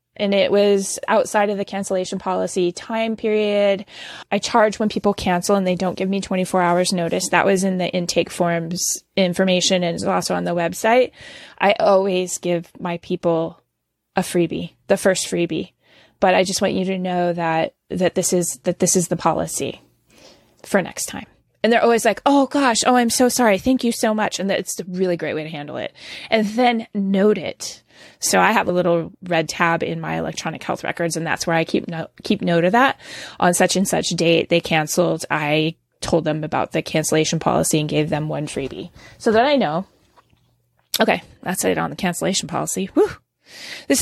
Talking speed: 195 wpm